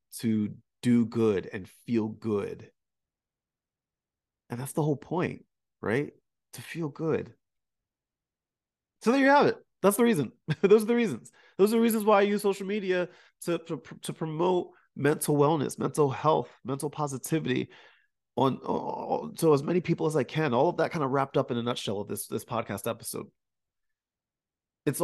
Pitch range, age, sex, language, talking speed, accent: 120-170 Hz, 30-49, male, English, 170 wpm, American